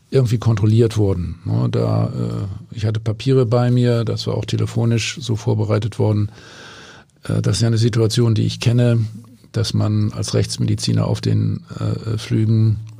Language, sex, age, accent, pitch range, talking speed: German, male, 50-69, German, 110-125 Hz, 140 wpm